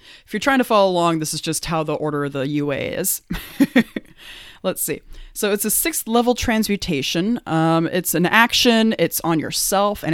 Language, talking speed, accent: English, 190 wpm, American